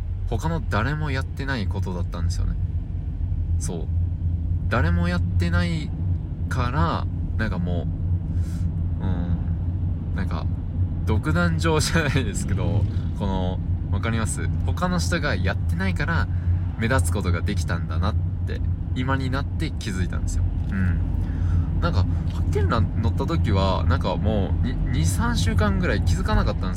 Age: 20-39